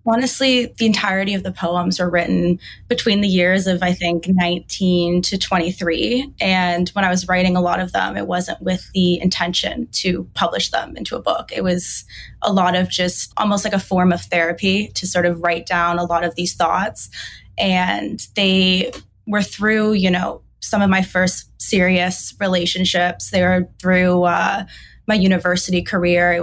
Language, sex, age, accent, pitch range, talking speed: English, female, 20-39, American, 175-195 Hz, 180 wpm